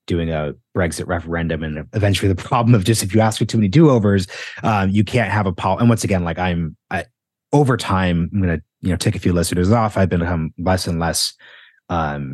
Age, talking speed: 30-49, 225 wpm